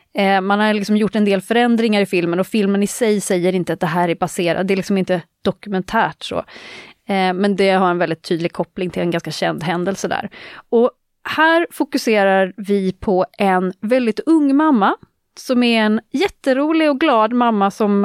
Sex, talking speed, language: female, 185 wpm, Swedish